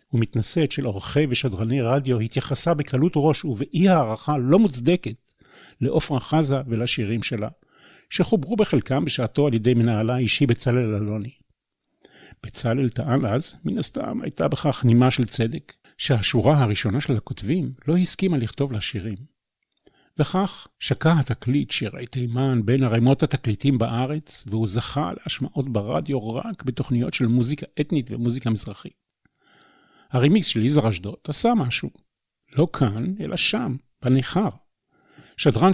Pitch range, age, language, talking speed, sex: 115-145 Hz, 50-69, Hebrew, 125 wpm, male